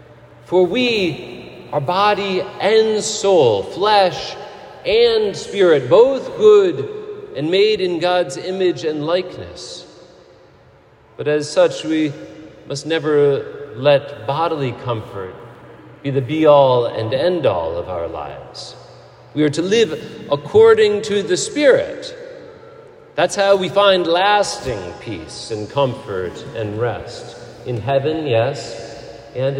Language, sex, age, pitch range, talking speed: English, male, 40-59, 125-205 Hz, 115 wpm